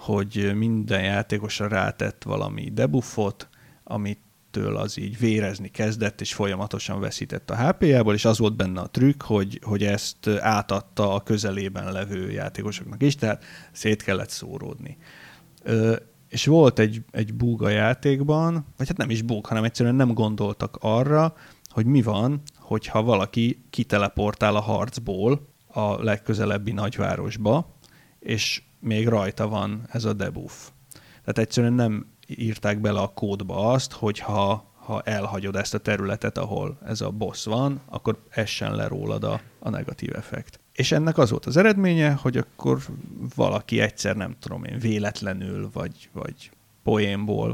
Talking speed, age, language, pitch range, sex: 145 wpm, 30-49, Hungarian, 100-125 Hz, male